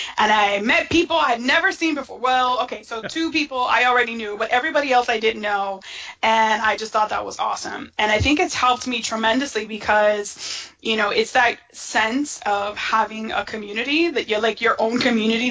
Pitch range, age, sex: 215-260 Hz, 20-39, female